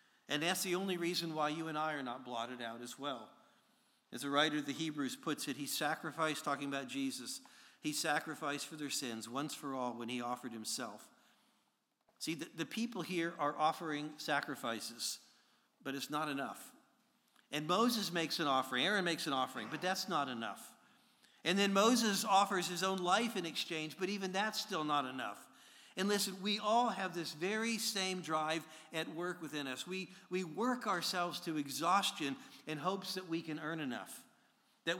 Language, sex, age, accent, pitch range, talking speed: English, male, 50-69, American, 150-195 Hz, 185 wpm